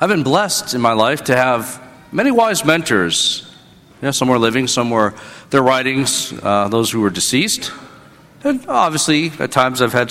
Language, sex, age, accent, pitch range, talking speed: English, male, 50-69, American, 120-150 Hz, 170 wpm